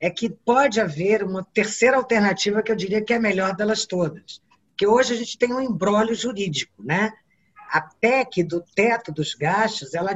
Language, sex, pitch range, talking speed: Portuguese, female, 165-215 Hz, 190 wpm